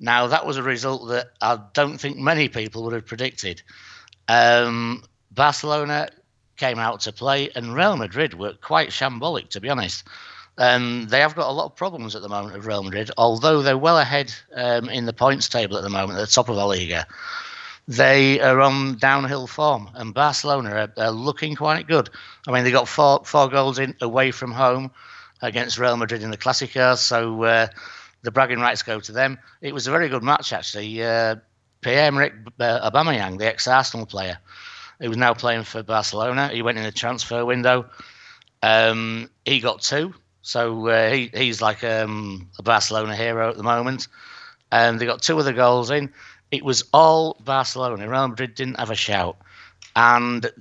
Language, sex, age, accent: English, male, 60-79, British